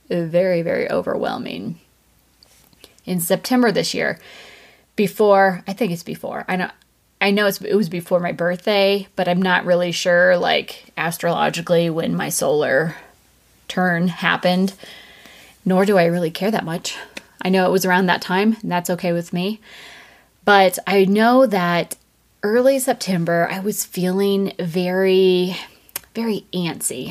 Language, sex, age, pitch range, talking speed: English, female, 20-39, 170-200 Hz, 140 wpm